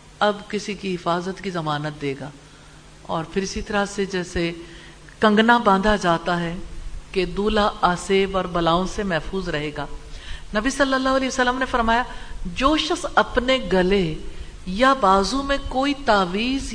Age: 50-69